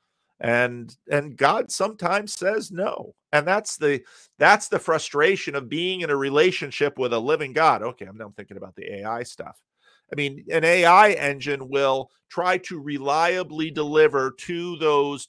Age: 50-69